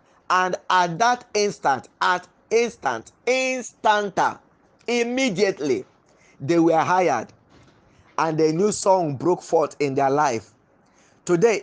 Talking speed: 110 wpm